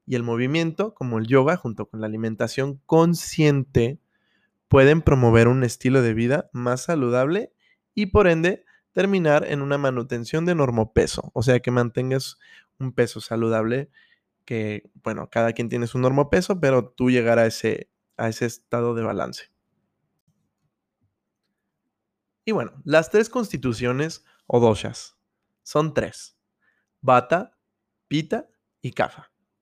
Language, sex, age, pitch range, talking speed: Spanish, male, 20-39, 115-160 Hz, 135 wpm